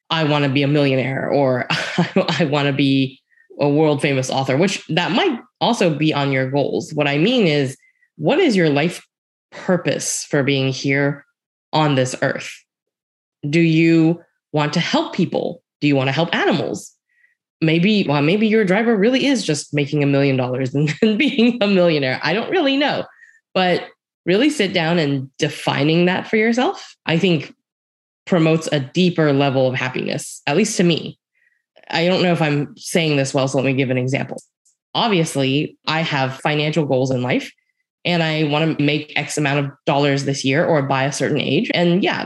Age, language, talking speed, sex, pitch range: 10-29, English, 185 wpm, female, 140-185 Hz